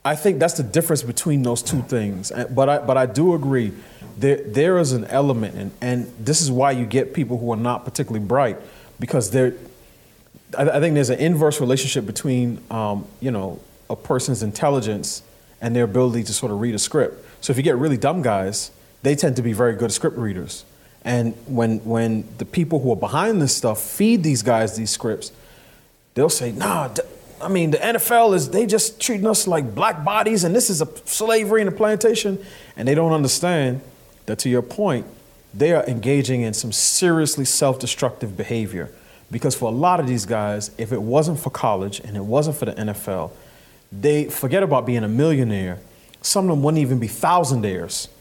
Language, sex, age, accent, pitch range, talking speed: English, male, 30-49, American, 115-155 Hz, 195 wpm